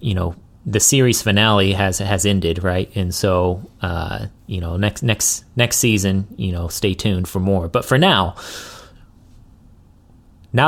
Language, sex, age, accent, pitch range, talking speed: English, male, 30-49, American, 95-115 Hz, 155 wpm